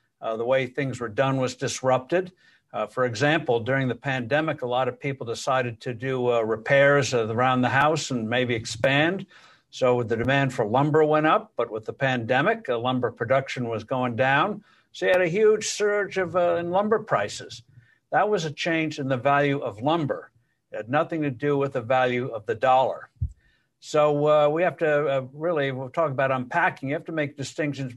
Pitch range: 125-155 Hz